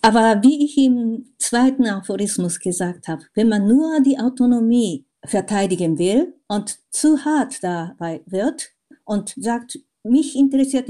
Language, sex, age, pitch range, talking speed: German, female, 50-69, 200-280 Hz, 130 wpm